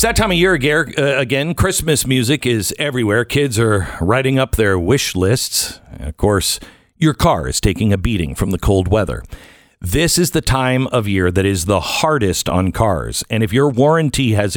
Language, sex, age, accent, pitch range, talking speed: English, male, 50-69, American, 100-155 Hz, 190 wpm